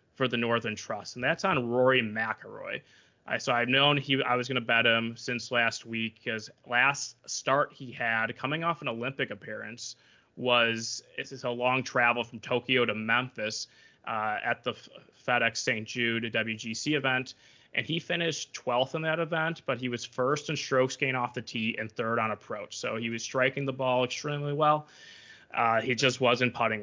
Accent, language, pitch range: American, English, 115-135 Hz